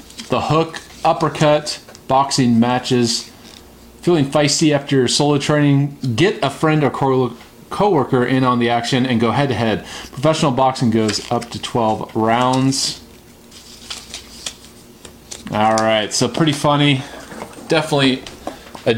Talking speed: 125 wpm